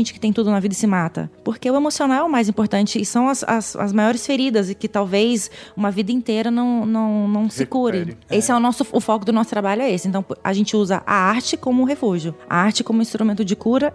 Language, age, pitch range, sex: Portuguese, 20-39, 195-230 Hz, female